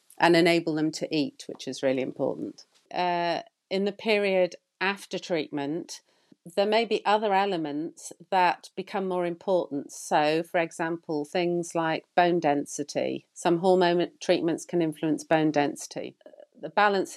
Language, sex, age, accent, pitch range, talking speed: English, female, 40-59, British, 155-185 Hz, 140 wpm